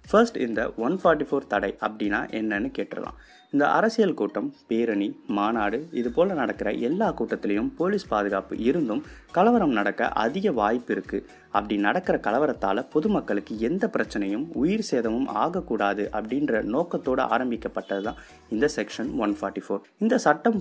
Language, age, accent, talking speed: Tamil, 20-39, native, 130 wpm